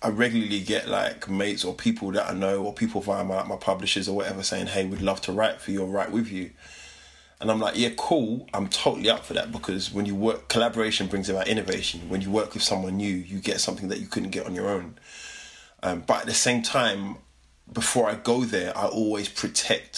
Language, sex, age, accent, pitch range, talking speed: English, male, 20-39, British, 95-110 Hz, 235 wpm